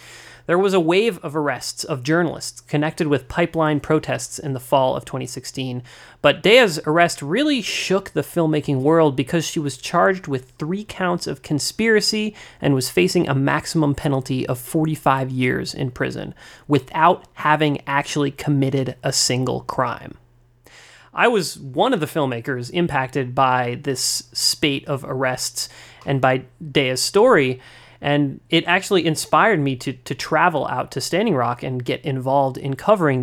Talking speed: 155 wpm